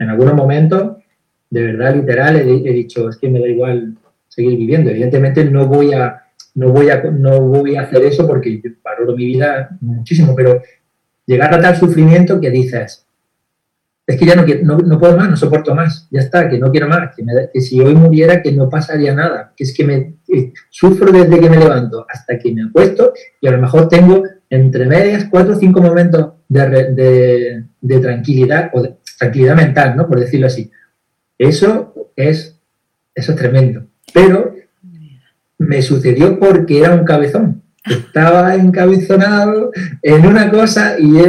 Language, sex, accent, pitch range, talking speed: Spanish, male, Spanish, 130-175 Hz, 165 wpm